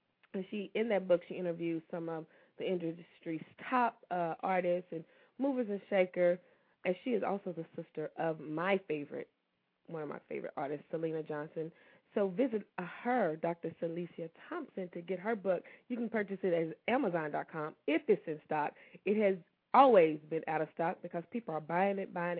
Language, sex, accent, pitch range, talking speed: English, female, American, 175-230 Hz, 175 wpm